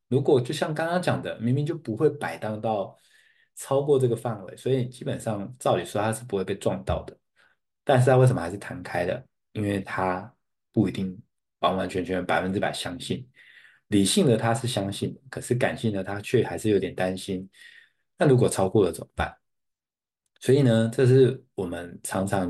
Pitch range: 100-125 Hz